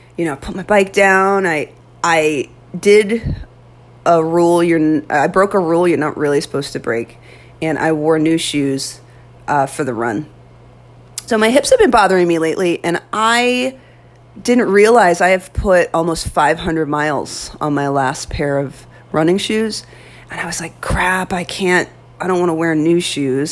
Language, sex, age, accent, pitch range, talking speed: English, female, 30-49, American, 150-185 Hz, 180 wpm